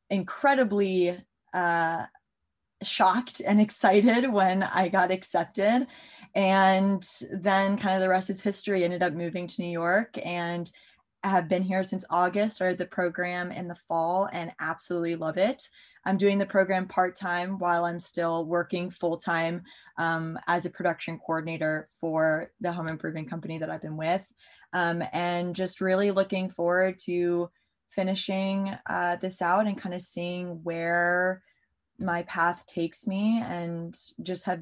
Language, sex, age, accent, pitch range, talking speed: English, female, 20-39, American, 170-190 Hz, 145 wpm